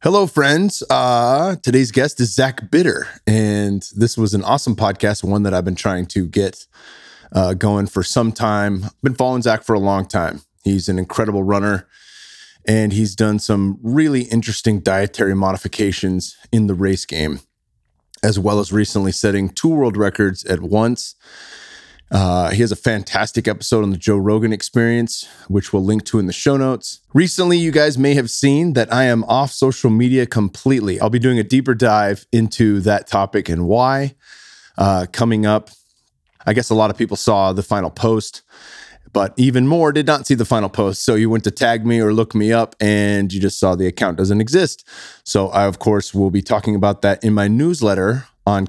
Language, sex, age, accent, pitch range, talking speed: English, male, 20-39, American, 100-120 Hz, 190 wpm